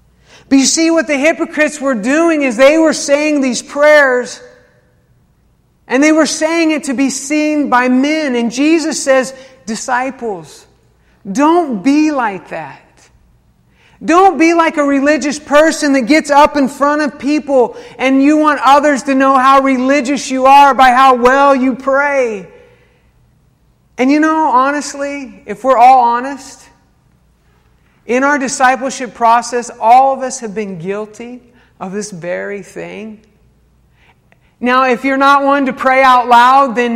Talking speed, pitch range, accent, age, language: 150 wpm, 235-285 Hz, American, 50-69, English